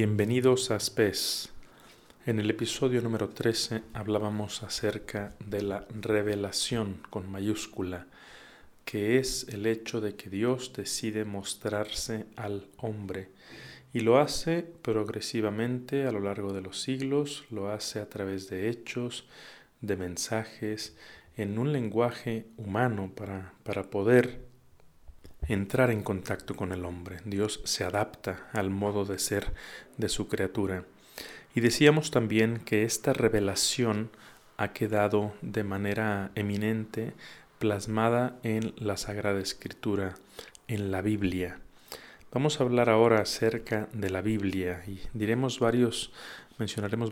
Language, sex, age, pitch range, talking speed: Spanish, male, 40-59, 100-115 Hz, 125 wpm